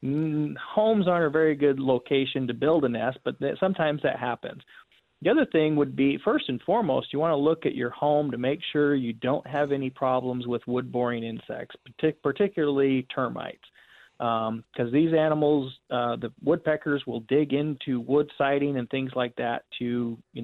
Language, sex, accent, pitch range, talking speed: English, male, American, 125-155 Hz, 175 wpm